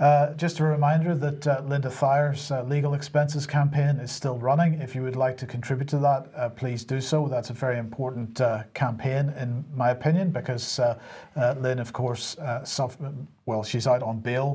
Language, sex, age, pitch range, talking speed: English, male, 40-59, 120-140 Hz, 195 wpm